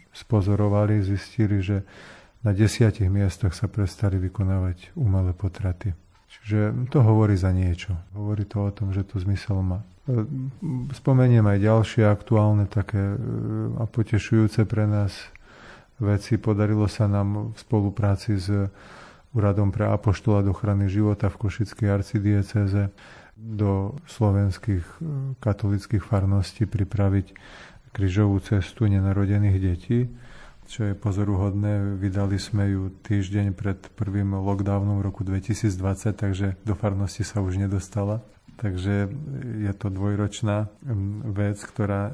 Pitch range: 100-105 Hz